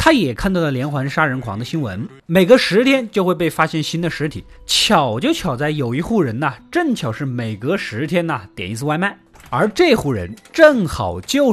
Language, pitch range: Chinese, 145-220 Hz